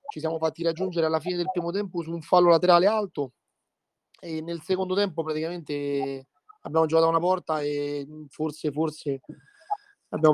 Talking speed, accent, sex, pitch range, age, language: 165 wpm, native, male, 155-190 Hz, 30-49, Italian